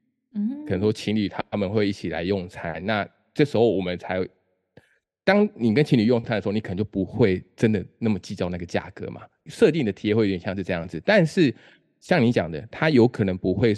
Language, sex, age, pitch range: Chinese, male, 20-39, 95-115 Hz